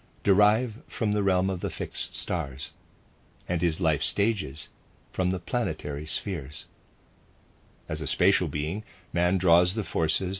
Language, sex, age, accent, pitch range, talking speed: English, male, 50-69, American, 80-105 Hz, 140 wpm